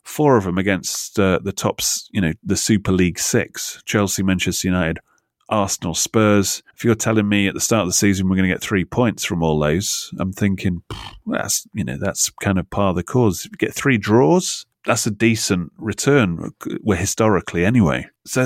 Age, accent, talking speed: 30-49, British, 190 wpm